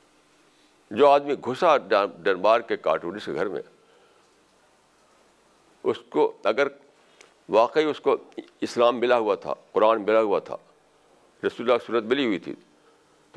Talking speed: 135 wpm